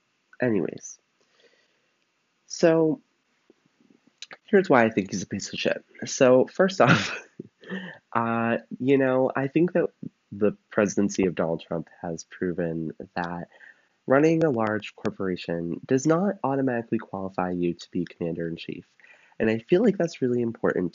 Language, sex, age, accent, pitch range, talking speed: English, male, 20-39, American, 90-135 Hz, 140 wpm